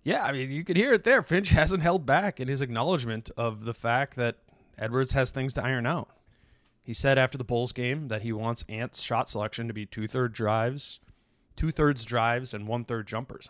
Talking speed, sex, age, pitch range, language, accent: 200 wpm, male, 20-39, 110-135 Hz, English, American